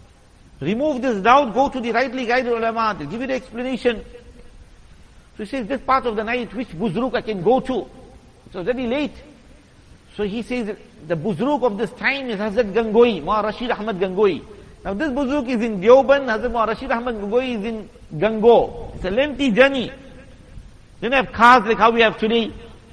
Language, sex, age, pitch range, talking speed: English, male, 50-69, 205-250 Hz, 190 wpm